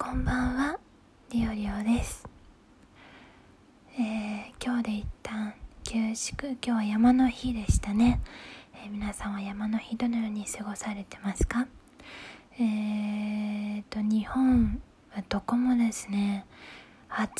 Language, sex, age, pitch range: Japanese, female, 20-39, 210-250 Hz